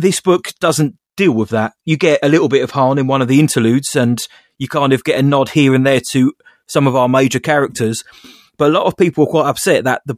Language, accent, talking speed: English, British, 260 wpm